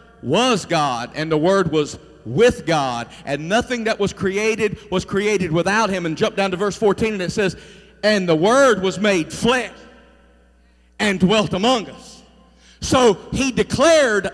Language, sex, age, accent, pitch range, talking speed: English, male, 40-59, American, 185-240 Hz, 165 wpm